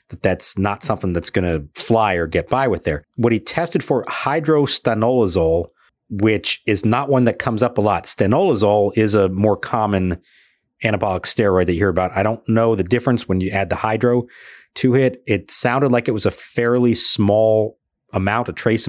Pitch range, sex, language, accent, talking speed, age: 95-120 Hz, male, English, American, 195 wpm, 40-59